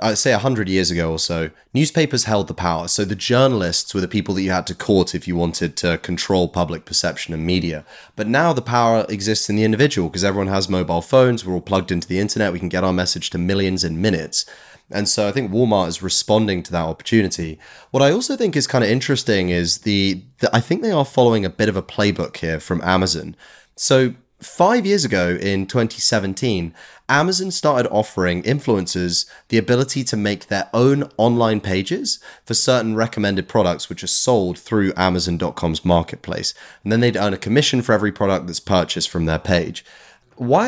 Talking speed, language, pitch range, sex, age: 205 wpm, English, 90-120 Hz, male, 30-49